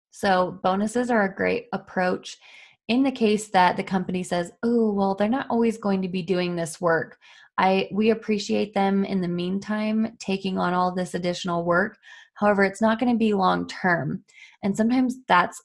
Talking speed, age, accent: 180 wpm, 20-39, American